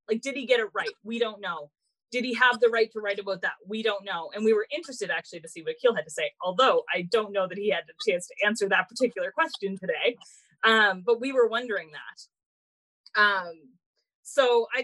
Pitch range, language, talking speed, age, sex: 195-260 Hz, English, 230 wpm, 30-49, female